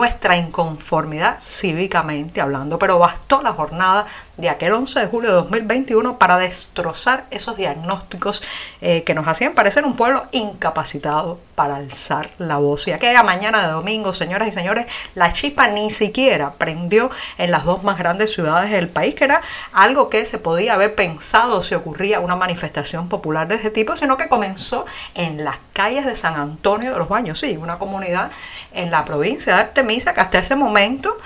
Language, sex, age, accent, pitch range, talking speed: Spanish, female, 50-69, American, 170-230 Hz, 175 wpm